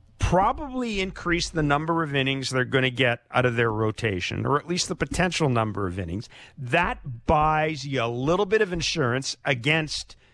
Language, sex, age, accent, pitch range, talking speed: English, male, 50-69, American, 120-160 Hz, 180 wpm